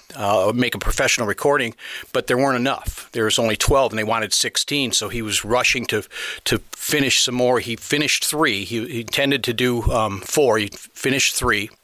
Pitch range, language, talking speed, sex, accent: 115-130 Hz, English, 200 wpm, male, American